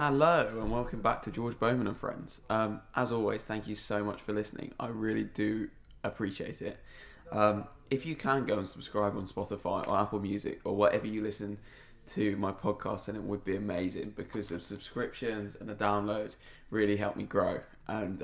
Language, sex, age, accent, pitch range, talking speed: English, male, 20-39, British, 105-115 Hz, 190 wpm